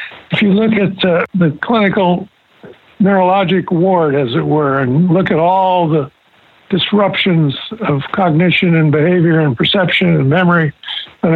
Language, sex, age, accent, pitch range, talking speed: English, male, 60-79, American, 165-205 Hz, 145 wpm